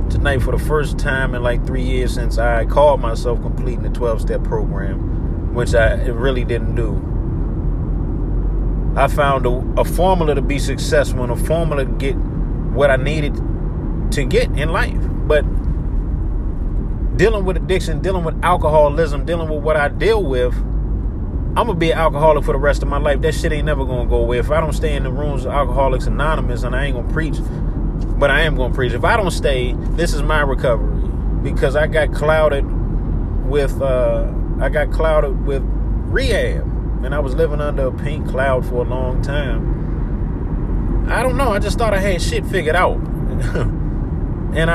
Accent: American